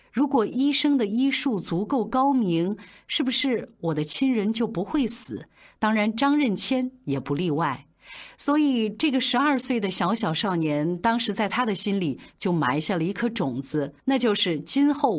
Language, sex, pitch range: Chinese, female, 165-255 Hz